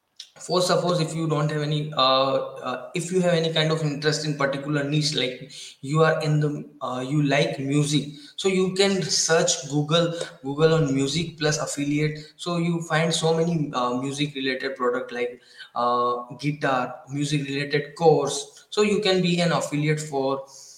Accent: Indian